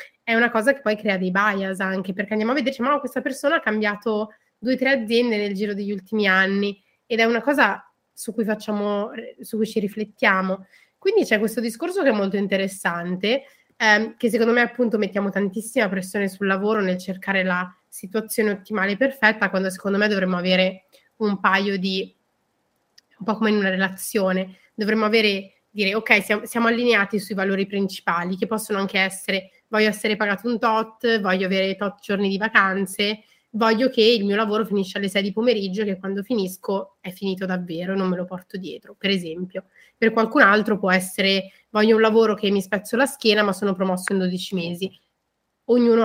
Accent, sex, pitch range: native, female, 195-225 Hz